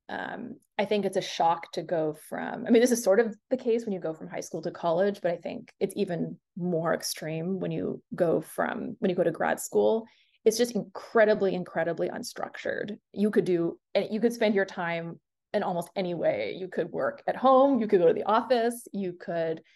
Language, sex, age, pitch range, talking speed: English, female, 20-39, 170-215 Hz, 220 wpm